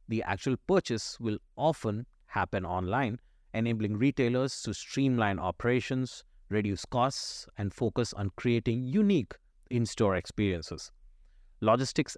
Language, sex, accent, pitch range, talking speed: English, male, Indian, 95-125 Hz, 110 wpm